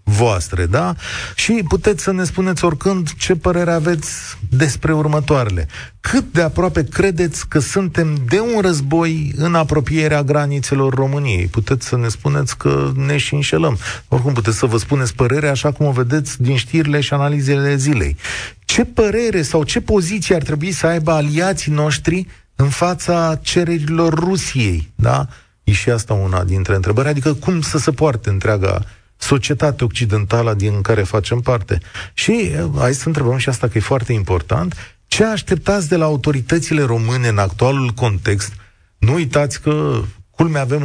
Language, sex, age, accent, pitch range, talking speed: Romanian, male, 30-49, native, 110-160 Hz, 155 wpm